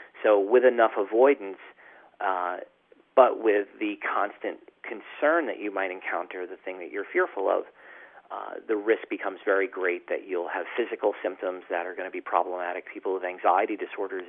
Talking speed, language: 170 wpm, English